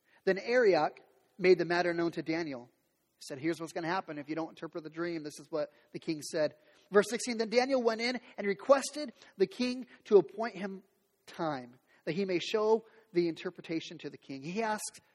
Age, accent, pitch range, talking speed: 30-49, American, 160-220 Hz, 205 wpm